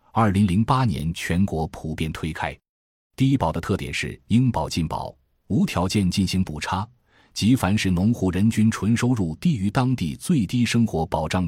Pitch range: 80-115 Hz